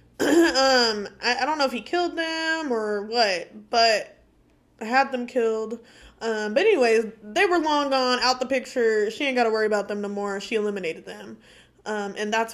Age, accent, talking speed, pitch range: 20-39, American, 195 wpm, 215-310 Hz